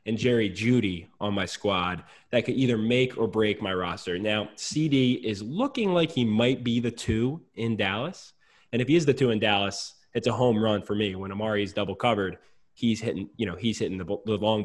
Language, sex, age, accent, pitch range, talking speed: English, male, 20-39, American, 105-130 Hz, 220 wpm